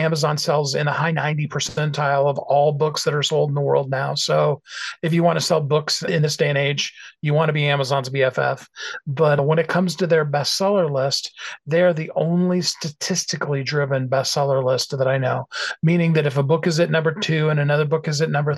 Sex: male